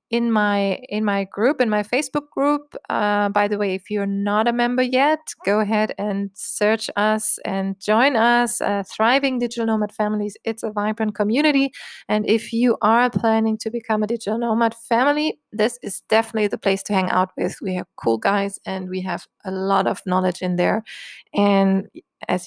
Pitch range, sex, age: 195-230 Hz, female, 20-39